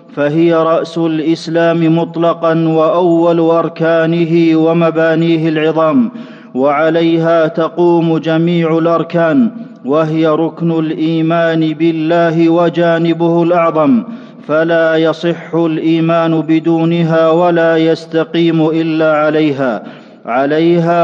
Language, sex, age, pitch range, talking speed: Arabic, male, 40-59, 160-170 Hz, 75 wpm